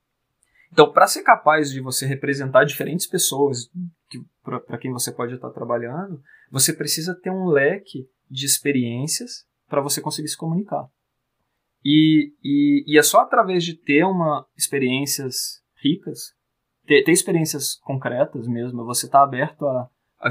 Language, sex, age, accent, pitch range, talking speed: Portuguese, male, 20-39, Brazilian, 135-170 Hz, 140 wpm